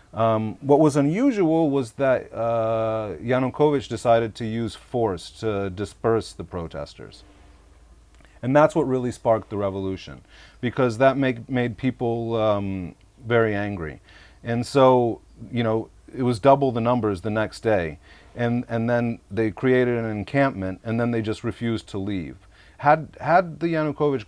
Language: English